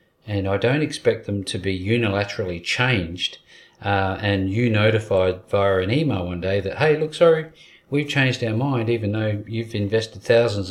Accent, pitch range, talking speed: Australian, 95-130 Hz, 175 wpm